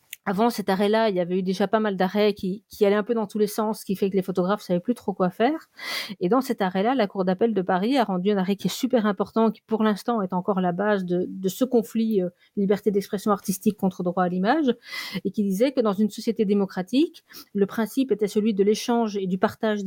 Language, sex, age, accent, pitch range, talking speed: French, female, 40-59, French, 195-240 Hz, 265 wpm